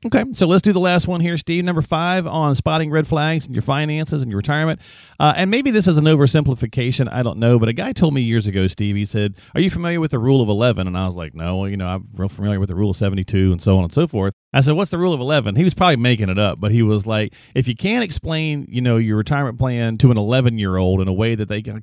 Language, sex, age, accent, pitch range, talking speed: English, male, 40-59, American, 105-150 Hz, 295 wpm